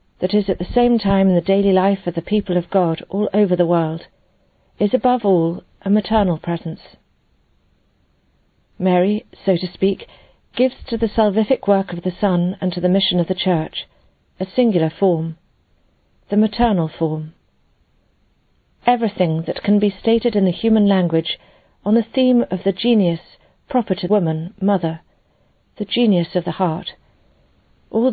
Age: 40-59